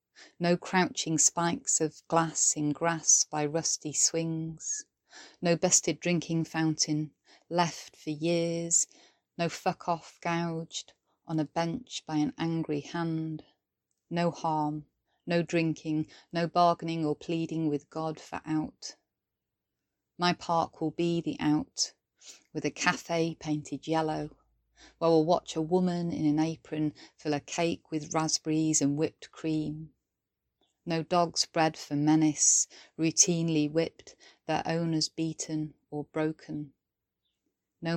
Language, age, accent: English, 30-49, British